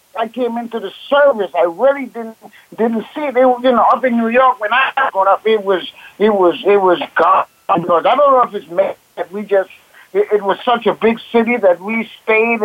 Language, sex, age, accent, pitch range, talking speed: English, male, 60-79, American, 180-230 Hz, 230 wpm